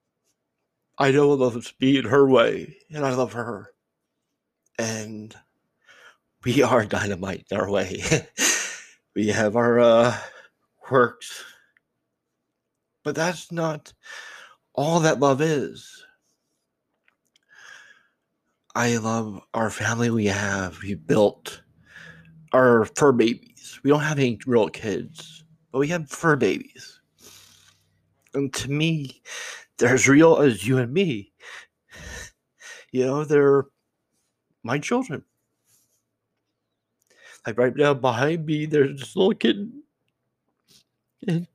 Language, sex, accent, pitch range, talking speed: English, male, American, 120-200 Hz, 115 wpm